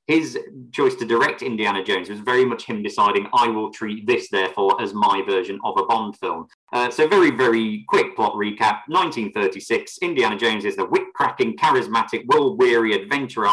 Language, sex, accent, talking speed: English, male, British, 175 wpm